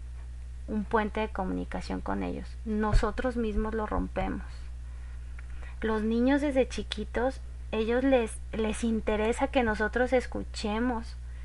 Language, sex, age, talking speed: Spanish, female, 30-49, 110 wpm